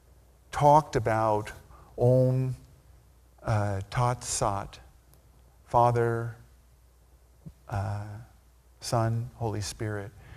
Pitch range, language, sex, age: 100-130 Hz, English, male, 50-69